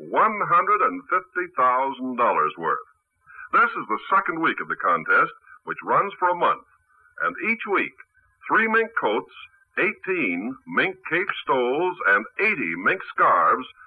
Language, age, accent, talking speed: English, 50-69, American, 145 wpm